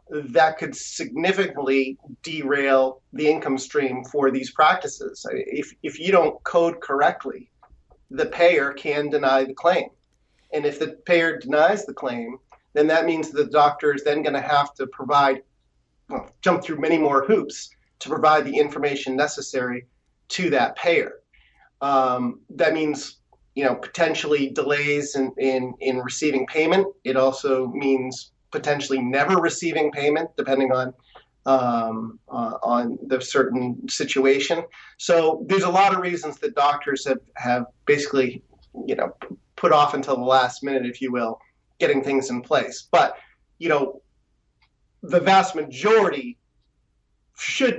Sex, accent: male, American